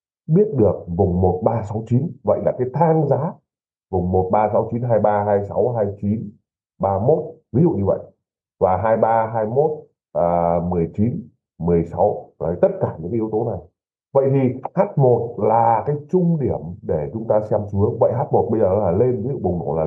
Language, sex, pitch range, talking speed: Vietnamese, male, 95-130 Hz, 170 wpm